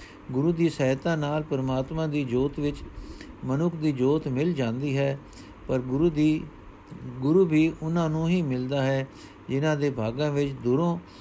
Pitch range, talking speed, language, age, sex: 135-165 Hz, 155 wpm, Punjabi, 50-69, male